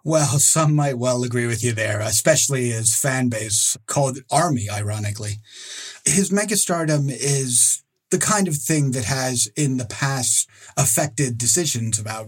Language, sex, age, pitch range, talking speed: English, male, 30-49, 115-140 Hz, 145 wpm